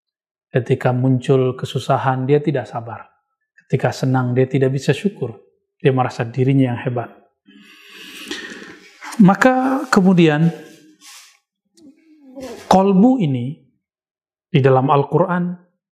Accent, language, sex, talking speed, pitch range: native, Indonesian, male, 90 wpm, 140-190 Hz